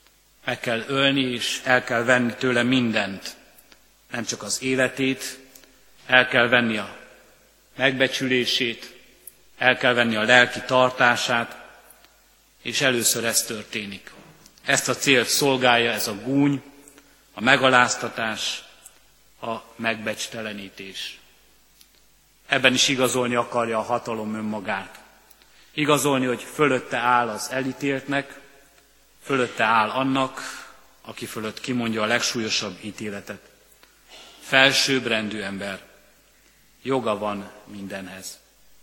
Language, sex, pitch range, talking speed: Hungarian, male, 115-130 Hz, 100 wpm